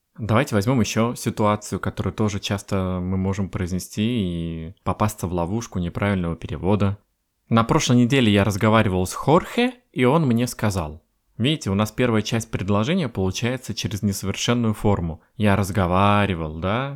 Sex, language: male, Russian